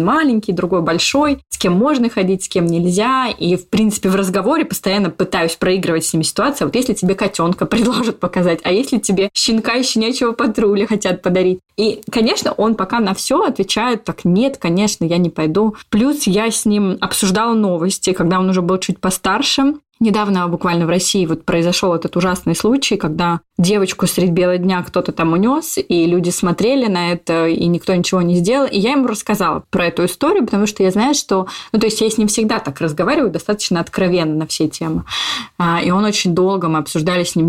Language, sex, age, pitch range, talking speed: Russian, female, 20-39, 175-220 Hz, 195 wpm